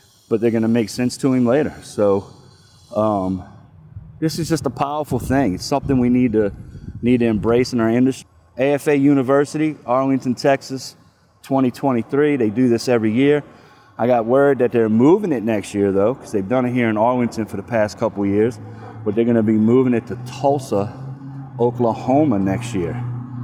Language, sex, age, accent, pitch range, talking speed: English, male, 30-49, American, 110-135 Hz, 180 wpm